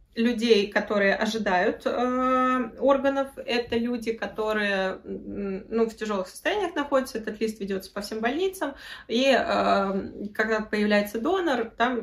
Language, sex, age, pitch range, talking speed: Russian, female, 20-39, 195-250 Hz, 125 wpm